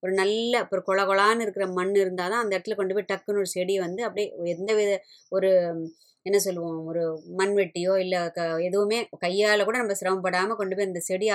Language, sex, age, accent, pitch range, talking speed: Tamil, male, 20-39, native, 175-220 Hz, 195 wpm